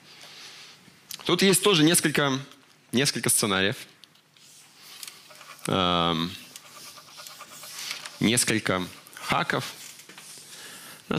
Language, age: Russian, 20-39